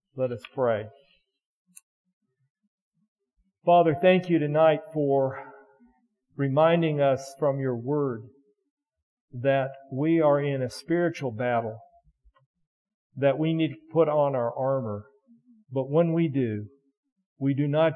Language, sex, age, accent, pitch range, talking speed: English, male, 50-69, American, 125-155 Hz, 115 wpm